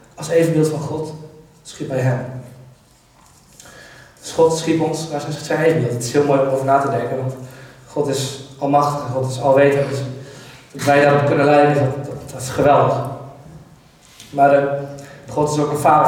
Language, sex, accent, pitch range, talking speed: Dutch, male, Dutch, 135-145 Hz, 185 wpm